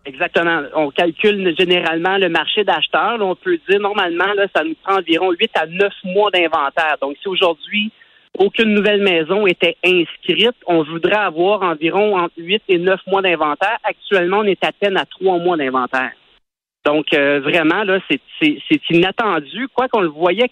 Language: French